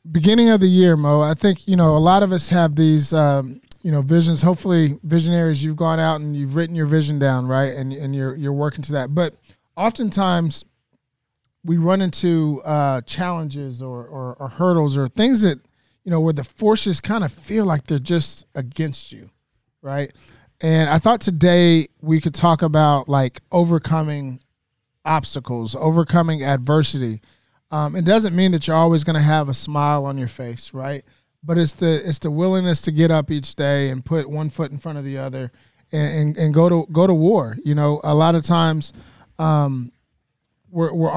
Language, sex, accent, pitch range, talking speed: English, male, American, 135-170 Hz, 190 wpm